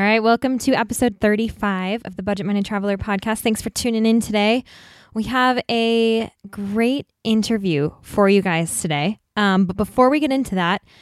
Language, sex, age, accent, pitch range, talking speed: English, female, 10-29, American, 195-235 Hz, 180 wpm